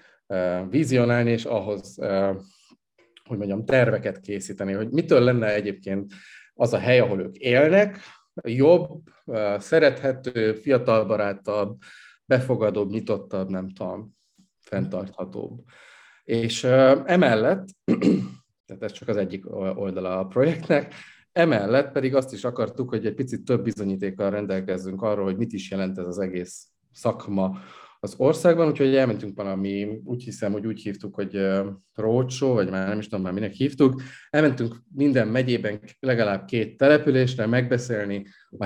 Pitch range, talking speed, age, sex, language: 100-125 Hz, 130 wpm, 30-49, male, Hungarian